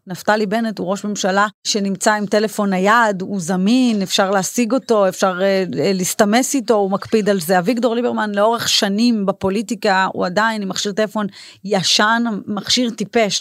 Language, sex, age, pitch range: Hebrew, female, 30-49, 195-230 Hz